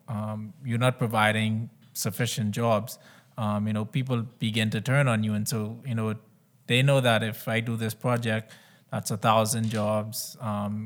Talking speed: 175 wpm